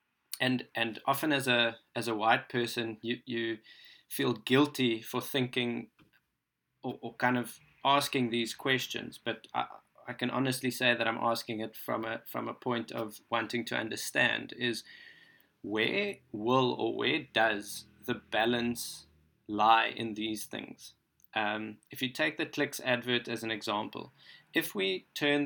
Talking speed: 155 wpm